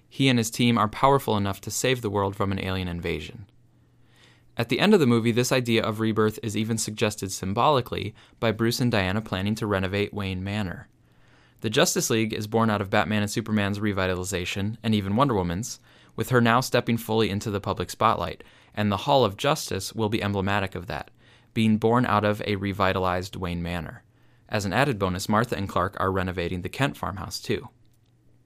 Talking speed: 195 wpm